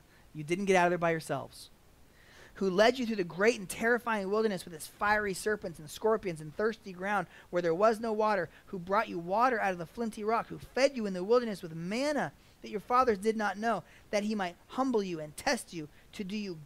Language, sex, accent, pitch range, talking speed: English, male, American, 165-225 Hz, 235 wpm